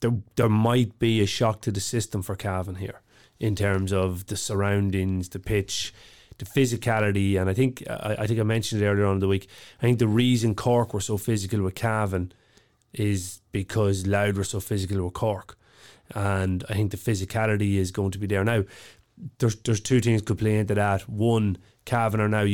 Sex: male